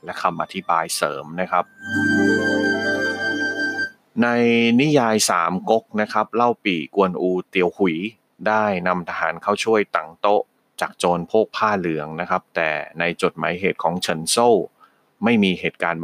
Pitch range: 85-110 Hz